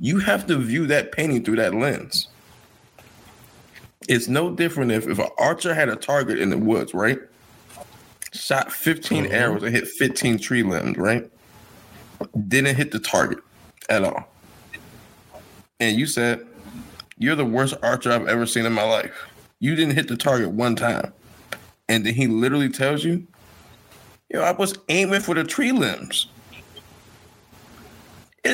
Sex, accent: male, American